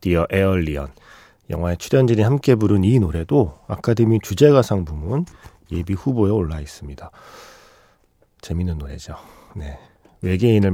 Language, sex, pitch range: Korean, male, 85-125 Hz